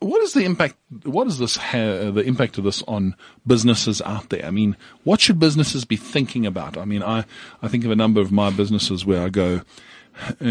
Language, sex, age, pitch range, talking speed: English, male, 50-69, 100-125 Hz, 225 wpm